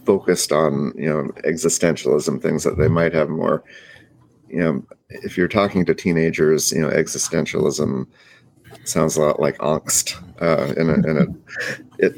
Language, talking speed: English, 155 wpm